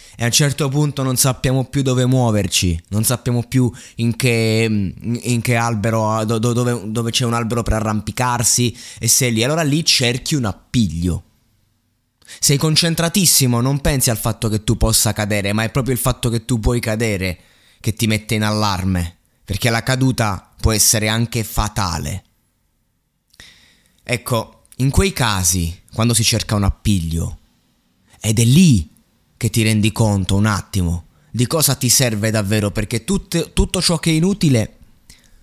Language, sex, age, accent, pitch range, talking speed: Italian, male, 20-39, native, 105-130 Hz, 160 wpm